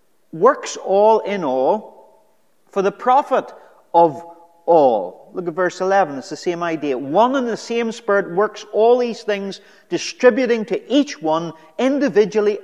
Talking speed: 145 wpm